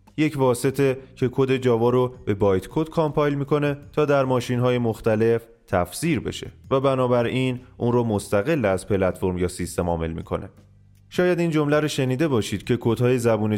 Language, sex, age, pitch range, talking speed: Persian, male, 30-49, 100-130 Hz, 170 wpm